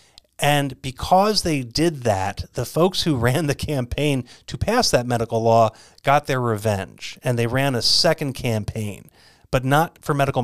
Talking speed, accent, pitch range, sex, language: 165 wpm, American, 115-145 Hz, male, English